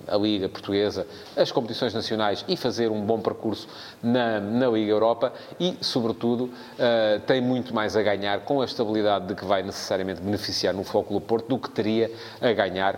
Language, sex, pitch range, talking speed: English, male, 105-135 Hz, 175 wpm